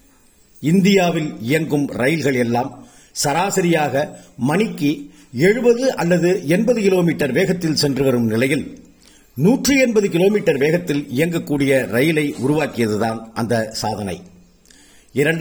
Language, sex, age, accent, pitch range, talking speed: Tamil, male, 50-69, native, 125-185 Hz, 85 wpm